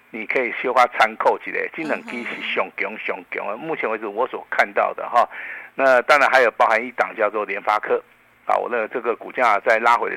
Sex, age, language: male, 50-69, Chinese